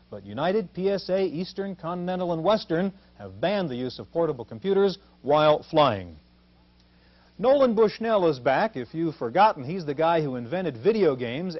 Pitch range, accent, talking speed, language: 135-200 Hz, American, 155 wpm, English